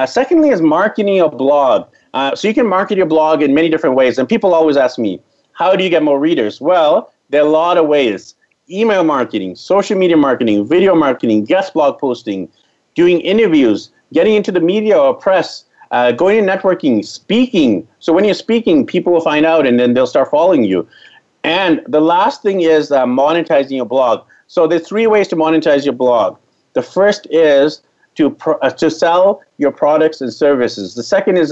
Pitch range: 140-185 Hz